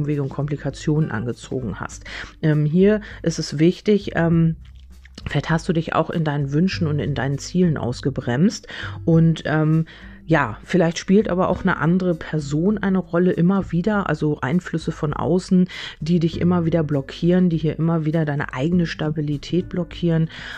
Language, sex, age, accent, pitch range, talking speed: German, female, 30-49, German, 140-170 Hz, 160 wpm